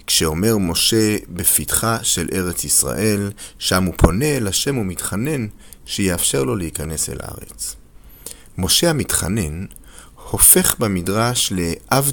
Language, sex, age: Hebrew, male, 40-59